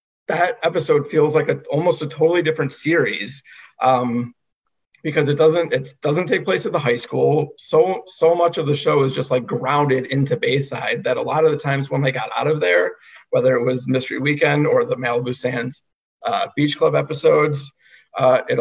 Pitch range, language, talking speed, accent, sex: 135-175 Hz, English, 195 wpm, American, male